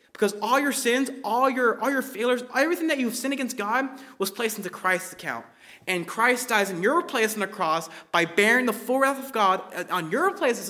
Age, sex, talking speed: 20-39, male, 225 wpm